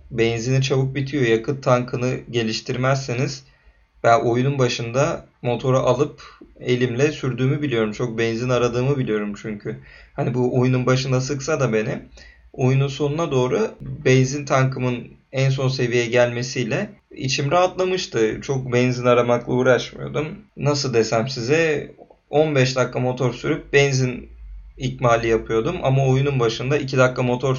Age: 30-49